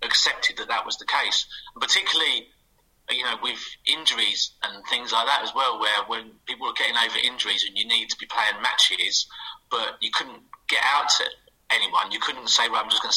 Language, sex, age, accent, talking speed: English, male, 30-49, British, 215 wpm